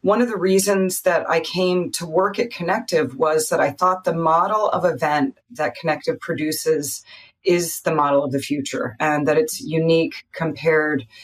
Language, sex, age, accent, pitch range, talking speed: English, female, 30-49, American, 155-190 Hz, 175 wpm